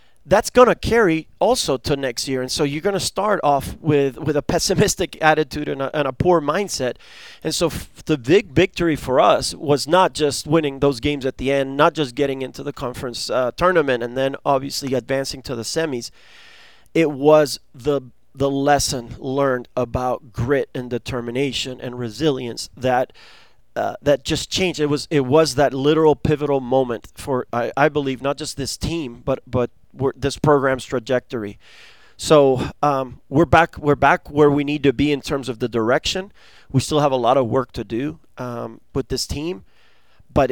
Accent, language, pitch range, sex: American, English, 130-160 Hz, male